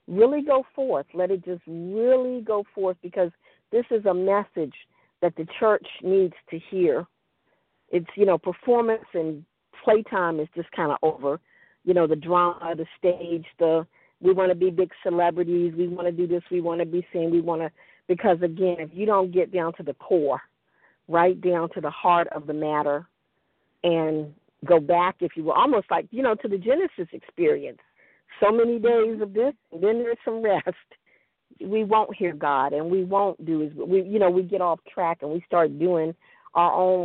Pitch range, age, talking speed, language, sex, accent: 170-230 Hz, 50-69, 195 wpm, English, female, American